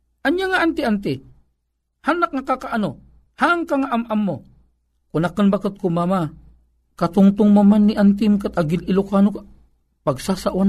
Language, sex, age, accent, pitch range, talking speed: Filipino, male, 50-69, native, 165-265 Hz, 125 wpm